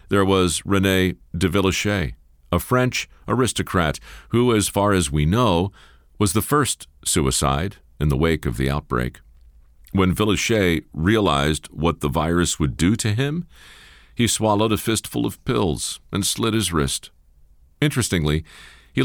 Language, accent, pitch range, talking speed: English, American, 70-105 Hz, 145 wpm